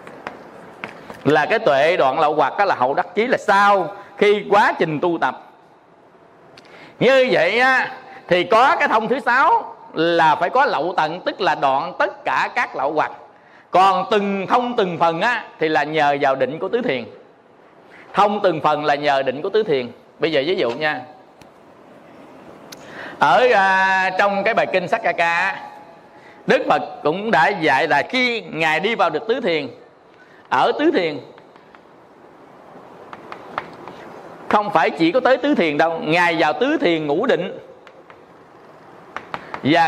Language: Vietnamese